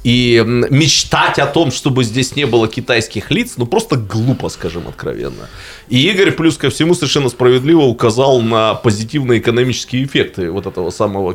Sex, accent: male, native